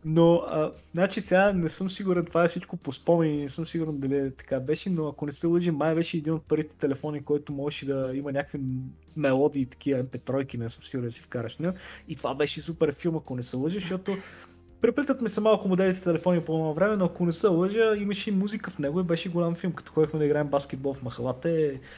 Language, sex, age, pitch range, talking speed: Bulgarian, male, 20-39, 135-180 Hz, 230 wpm